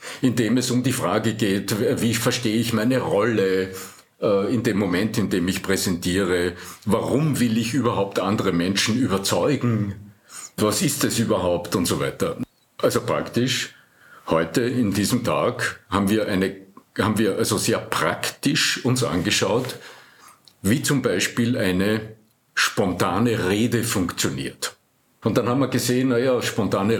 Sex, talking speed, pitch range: male, 140 wpm, 100-125 Hz